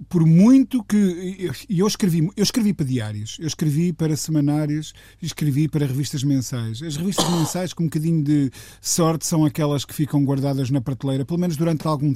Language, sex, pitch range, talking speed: Portuguese, male, 145-170 Hz, 180 wpm